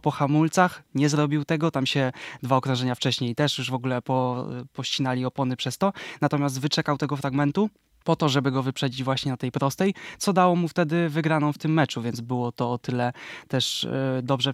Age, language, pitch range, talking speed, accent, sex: 20-39, Polish, 130-145 Hz, 190 wpm, native, male